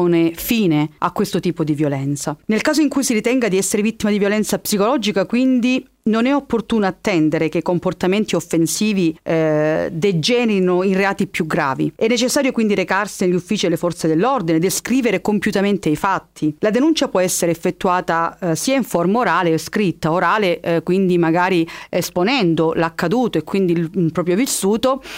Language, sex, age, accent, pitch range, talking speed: Italian, female, 40-59, native, 165-205 Hz, 165 wpm